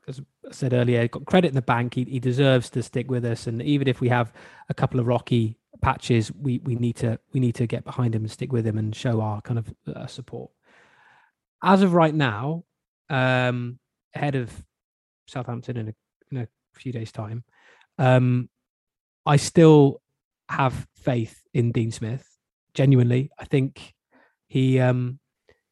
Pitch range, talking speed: 120-140 Hz, 175 wpm